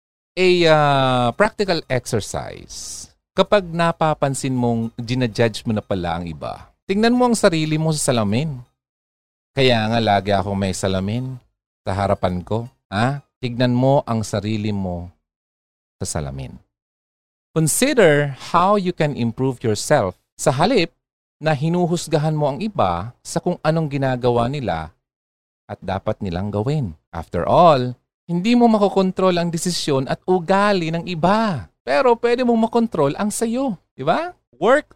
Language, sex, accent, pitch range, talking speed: Filipino, male, native, 100-160 Hz, 135 wpm